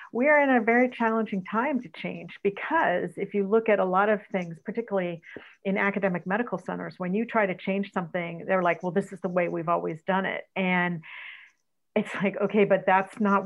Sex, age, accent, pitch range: female, 50-69, American, 180-205 Hz